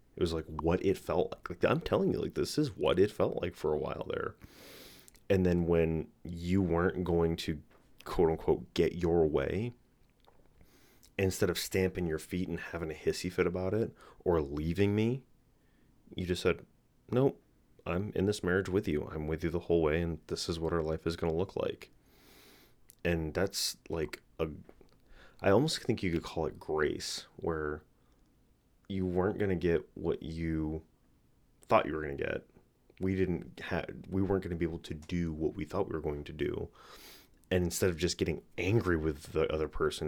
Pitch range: 80-95 Hz